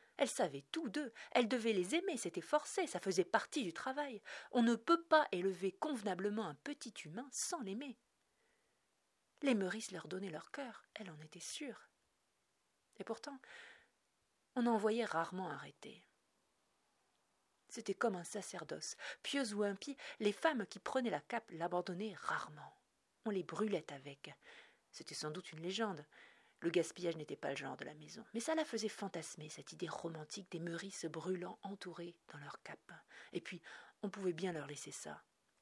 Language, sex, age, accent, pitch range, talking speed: French, female, 40-59, French, 180-265 Hz, 165 wpm